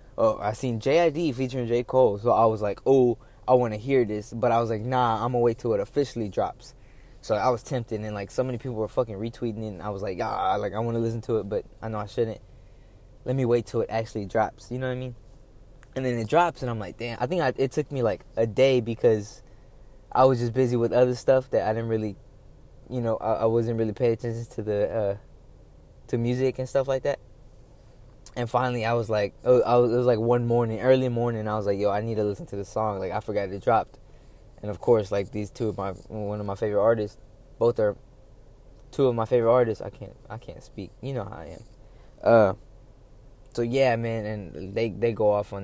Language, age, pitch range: English, 20-39, 105-125 Hz